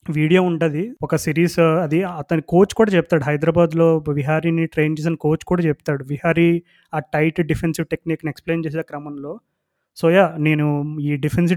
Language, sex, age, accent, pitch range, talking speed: Telugu, male, 20-39, native, 155-175 Hz, 145 wpm